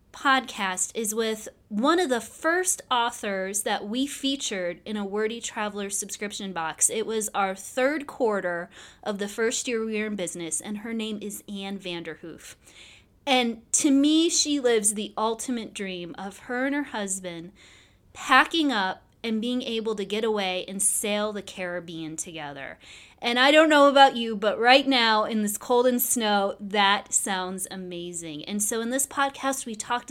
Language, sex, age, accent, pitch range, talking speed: English, female, 30-49, American, 200-255 Hz, 170 wpm